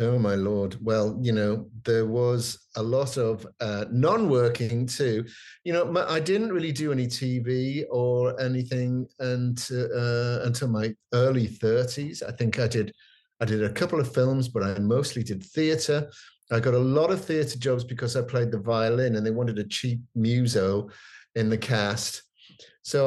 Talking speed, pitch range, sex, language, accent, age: 175 wpm, 115-140 Hz, male, English, British, 50-69